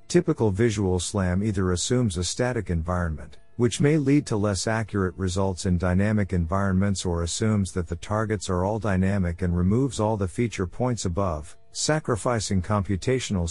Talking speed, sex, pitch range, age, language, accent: 155 wpm, male, 90-110 Hz, 50-69, English, American